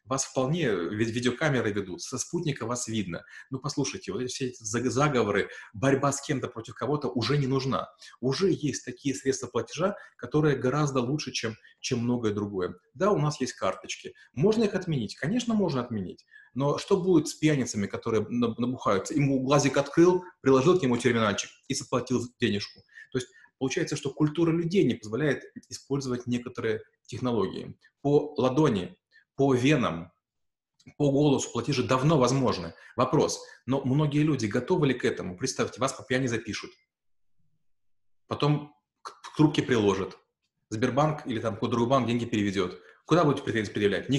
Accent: native